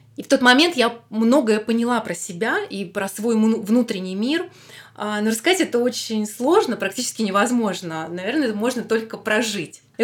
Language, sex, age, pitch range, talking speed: Russian, female, 20-39, 200-245 Hz, 160 wpm